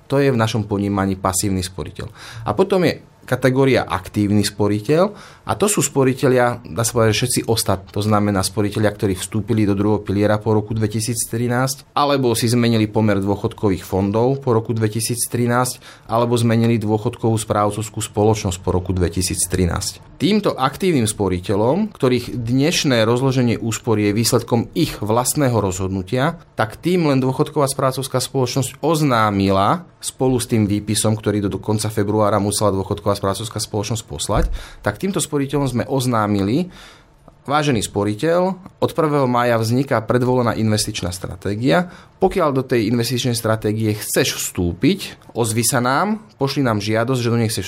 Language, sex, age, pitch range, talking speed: Slovak, male, 30-49, 105-130 Hz, 140 wpm